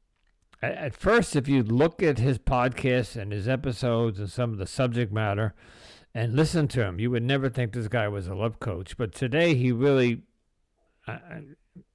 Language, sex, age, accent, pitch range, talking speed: English, male, 50-69, American, 110-150 Hz, 180 wpm